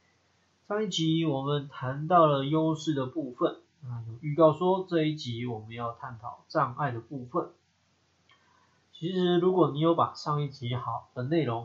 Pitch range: 115-155 Hz